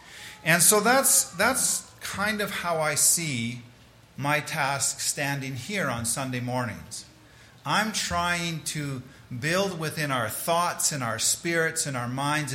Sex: male